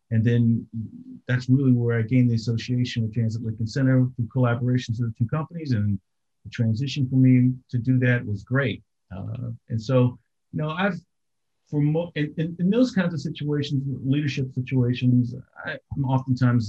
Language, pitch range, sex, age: English, 105-130 Hz, male, 50-69